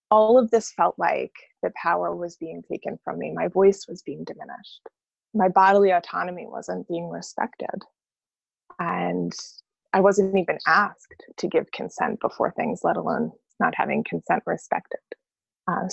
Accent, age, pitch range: American, 20-39, 175-215 Hz